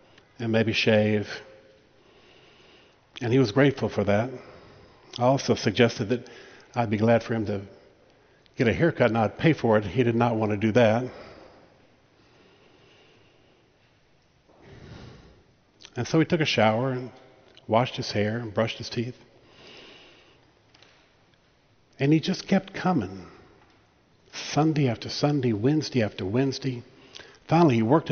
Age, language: 60-79, English